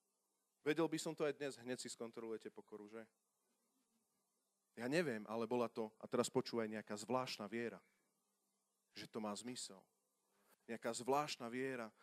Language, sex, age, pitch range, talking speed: Slovak, male, 30-49, 120-175 Hz, 145 wpm